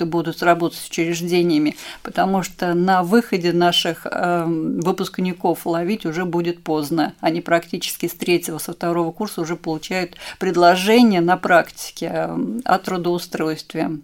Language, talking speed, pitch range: Russian, 120 wpm, 165-185 Hz